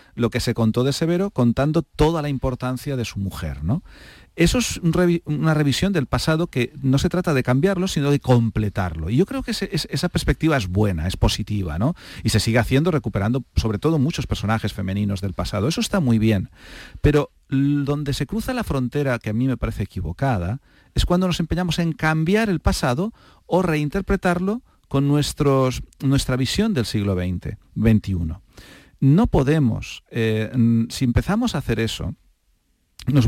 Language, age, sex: Spanish, 40-59, male